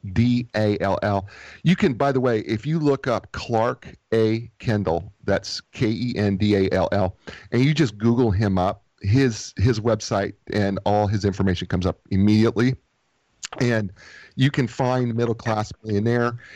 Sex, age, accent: male, 40-59, American